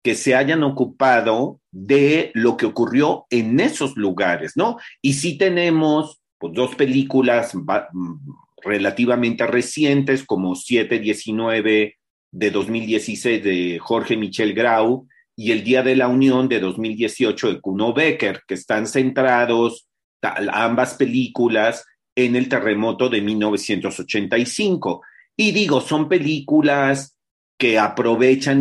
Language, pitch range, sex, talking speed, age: English, 110-135 Hz, male, 115 wpm, 40-59